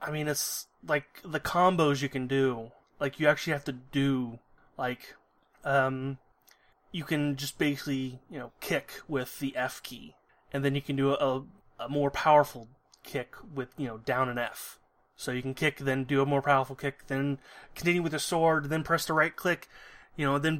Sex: male